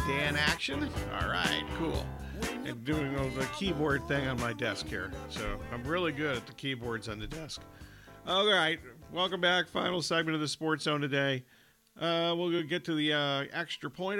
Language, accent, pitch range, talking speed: English, American, 130-170 Hz, 190 wpm